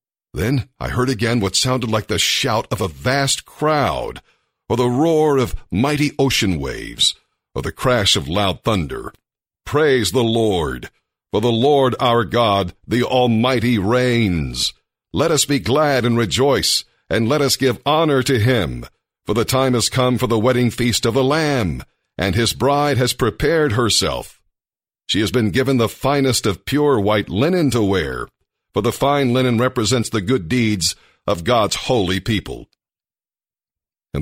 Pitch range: 105-130 Hz